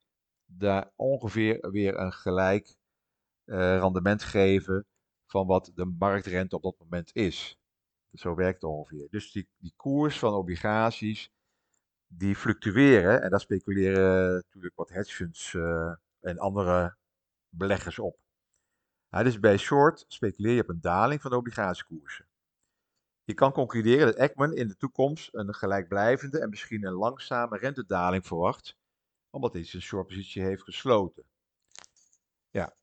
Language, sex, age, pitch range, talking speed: Dutch, male, 50-69, 95-125 Hz, 135 wpm